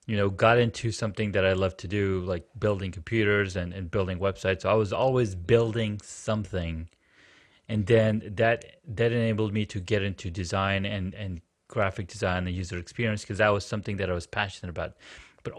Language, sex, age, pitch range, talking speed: English, male, 30-49, 95-115 Hz, 195 wpm